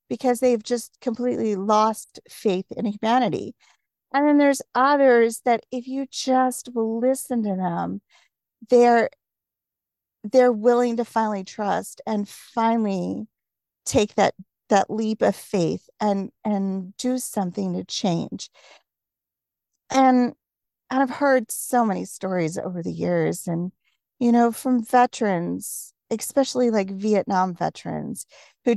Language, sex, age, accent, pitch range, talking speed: English, female, 40-59, American, 195-240 Hz, 125 wpm